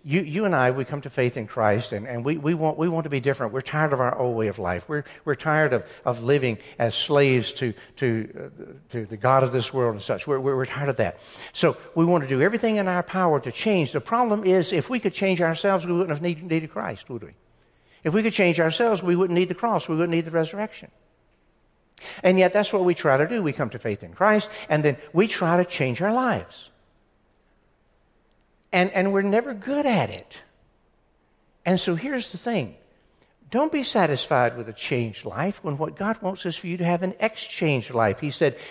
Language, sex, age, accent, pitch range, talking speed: English, male, 60-79, American, 125-185 Hz, 230 wpm